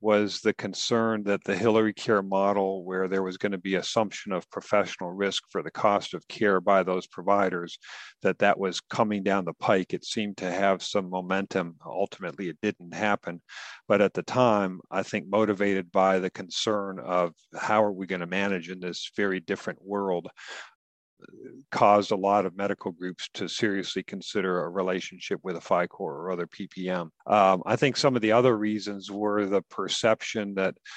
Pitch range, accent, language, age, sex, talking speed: 90-100 Hz, American, English, 50-69, male, 180 wpm